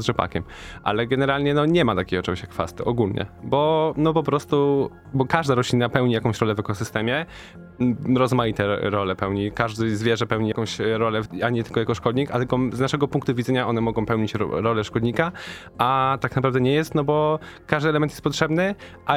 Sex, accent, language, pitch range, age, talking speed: male, native, Polish, 110-135 Hz, 10-29, 190 wpm